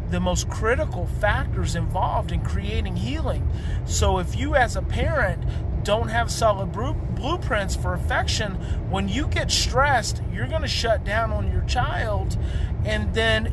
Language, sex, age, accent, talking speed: English, male, 30-49, American, 150 wpm